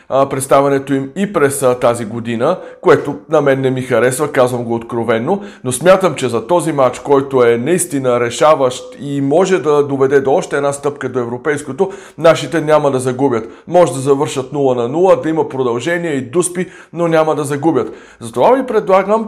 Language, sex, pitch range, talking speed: Bulgarian, male, 130-160 Hz, 175 wpm